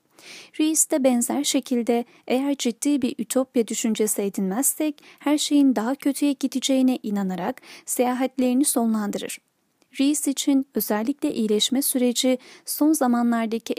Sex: female